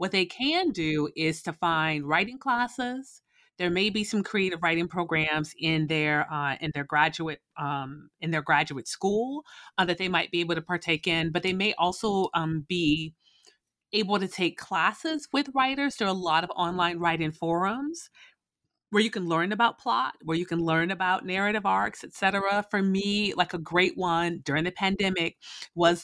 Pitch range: 165-215 Hz